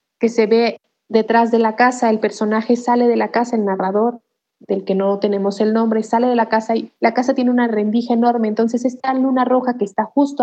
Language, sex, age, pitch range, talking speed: Spanish, female, 30-49, 205-230 Hz, 225 wpm